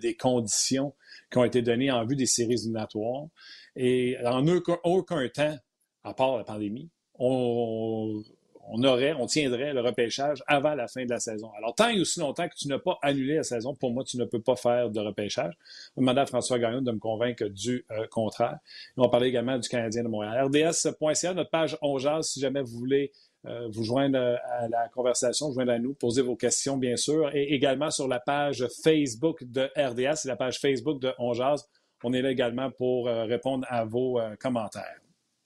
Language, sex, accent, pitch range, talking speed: French, male, Canadian, 120-145 Hz, 205 wpm